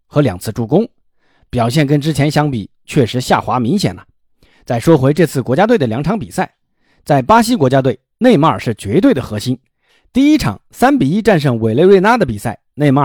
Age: 50-69